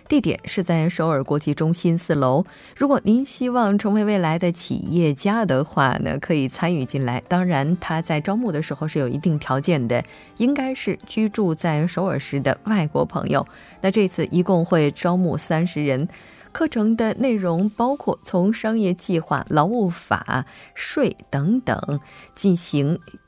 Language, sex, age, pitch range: Korean, female, 20-39, 155-205 Hz